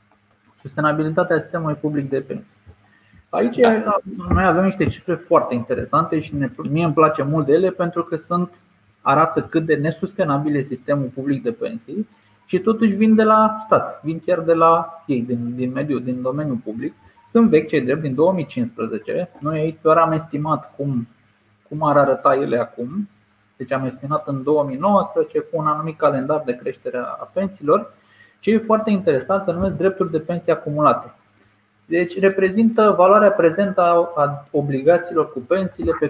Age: 20-39